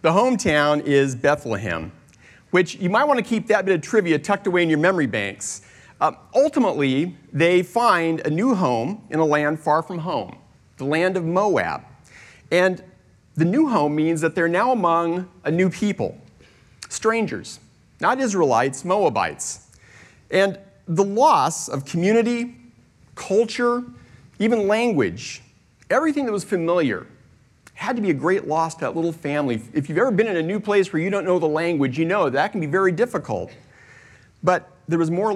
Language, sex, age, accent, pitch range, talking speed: English, male, 40-59, American, 150-215 Hz, 170 wpm